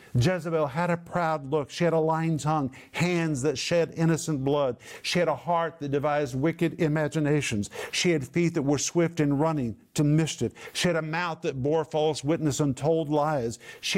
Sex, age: male, 50-69